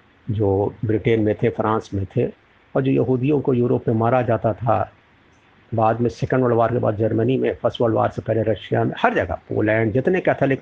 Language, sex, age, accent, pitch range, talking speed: Hindi, male, 50-69, native, 110-130 Hz, 210 wpm